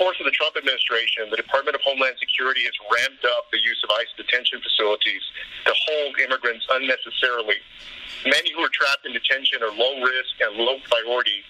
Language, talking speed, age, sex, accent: English, 165 wpm, 40-59, male, American